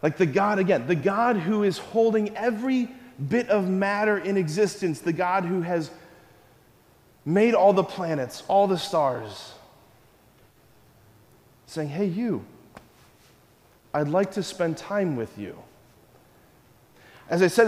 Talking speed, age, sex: 130 wpm, 30-49, male